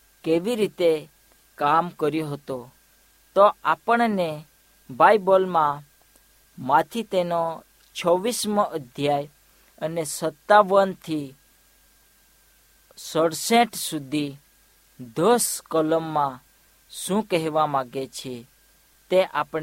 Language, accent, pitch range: Hindi, native, 150-200 Hz